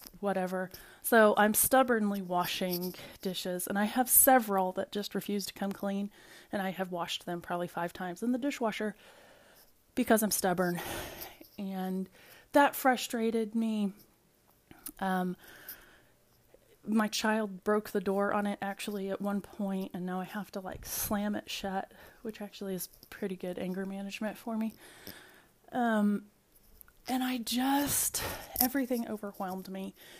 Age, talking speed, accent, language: 20-39, 140 wpm, American, English